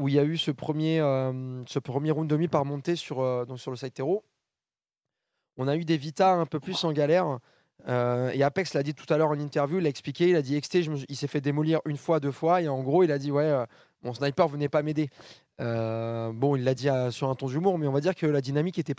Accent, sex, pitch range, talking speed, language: French, male, 135-165 Hz, 275 wpm, French